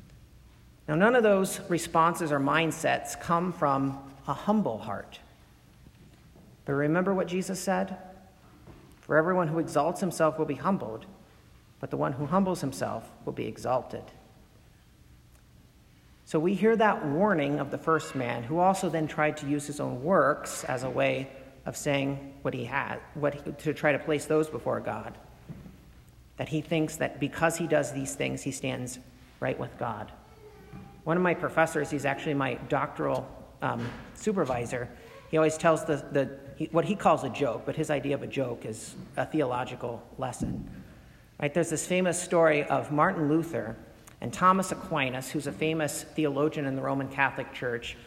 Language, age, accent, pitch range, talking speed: English, 50-69, American, 135-165 Hz, 165 wpm